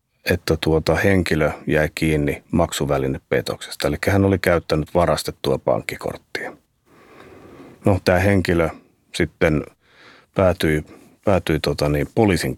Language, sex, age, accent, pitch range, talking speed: Finnish, male, 30-49, native, 80-90 Hz, 100 wpm